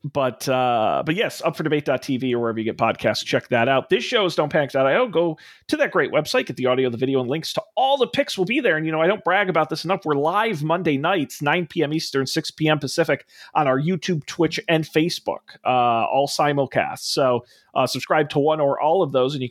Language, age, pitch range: English, 40-59, 125-165 Hz